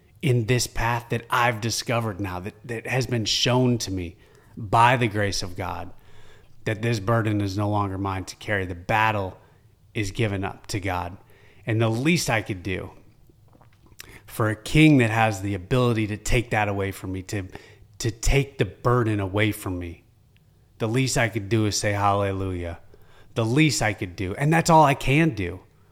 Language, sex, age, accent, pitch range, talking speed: English, male, 30-49, American, 100-120 Hz, 190 wpm